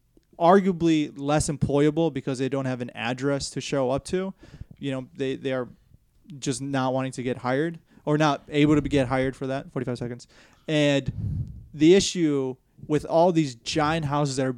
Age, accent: 20-39, American